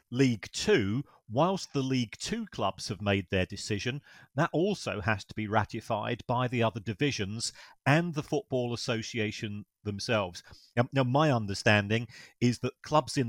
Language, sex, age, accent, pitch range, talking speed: English, male, 40-59, British, 105-130 Hz, 155 wpm